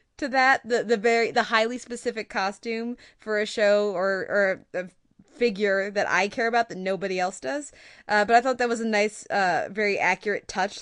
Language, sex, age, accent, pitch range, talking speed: English, female, 20-39, American, 195-235 Hz, 200 wpm